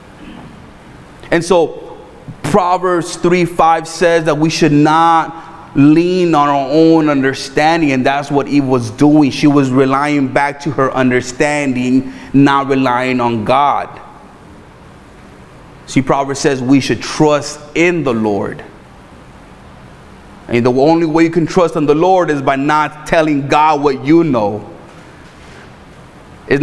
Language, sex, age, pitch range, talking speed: English, male, 30-49, 140-160 Hz, 135 wpm